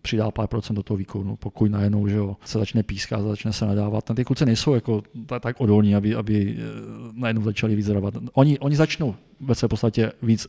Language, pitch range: Czech, 105-115 Hz